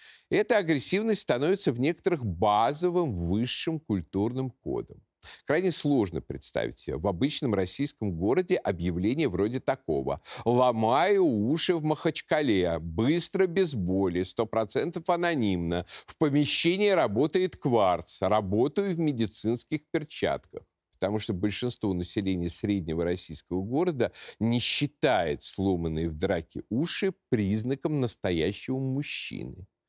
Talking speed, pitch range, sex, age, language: 105 wpm, 95-155 Hz, male, 50-69, Russian